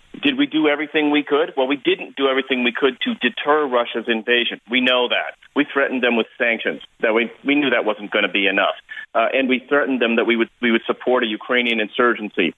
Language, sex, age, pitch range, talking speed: English, male, 40-59, 125-170 Hz, 235 wpm